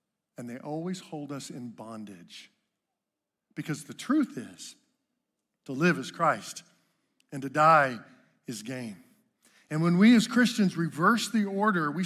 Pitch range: 165-215 Hz